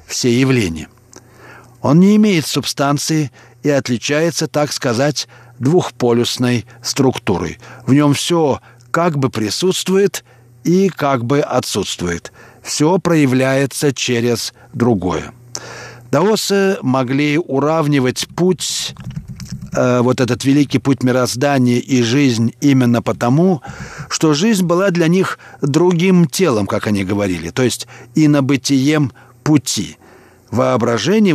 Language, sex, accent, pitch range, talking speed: Russian, male, native, 120-160 Hz, 105 wpm